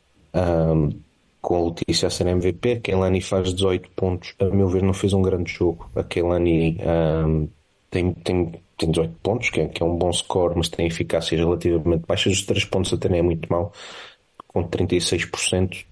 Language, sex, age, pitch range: Portuguese, male, 30-49, 85-95 Hz